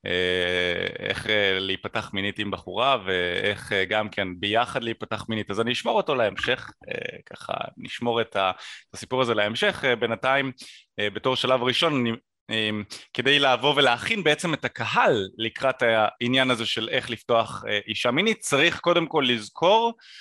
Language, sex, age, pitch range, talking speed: Hebrew, male, 20-39, 110-140 Hz, 130 wpm